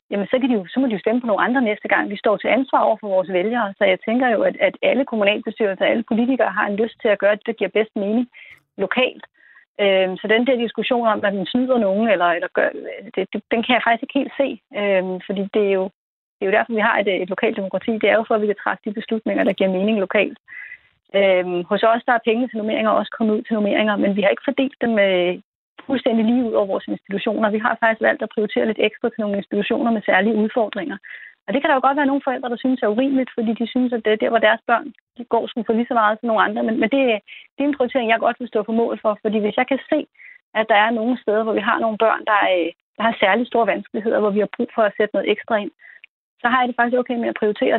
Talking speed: 285 wpm